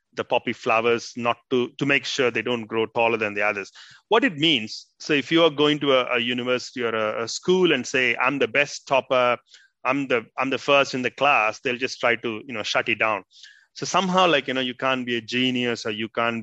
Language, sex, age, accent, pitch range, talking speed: English, male, 30-49, Indian, 120-145 Hz, 245 wpm